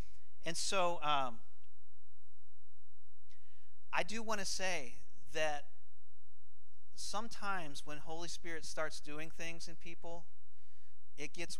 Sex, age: male, 40-59